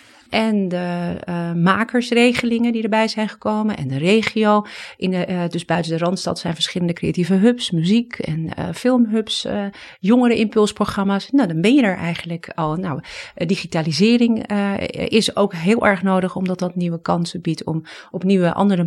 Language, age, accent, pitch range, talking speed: Dutch, 40-59, Dutch, 170-215 Hz, 165 wpm